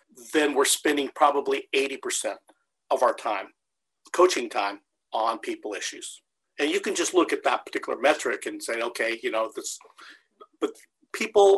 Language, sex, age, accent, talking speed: English, male, 50-69, American, 155 wpm